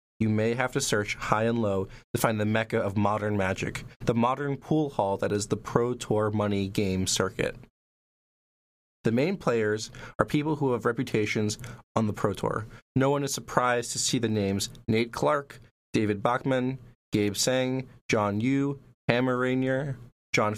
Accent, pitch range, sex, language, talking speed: American, 105-135 Hz, male, English, 170 wpm